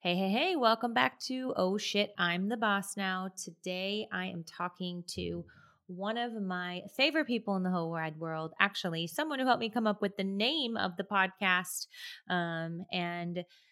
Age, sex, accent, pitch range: 20-39, female, American, 165-200 Hz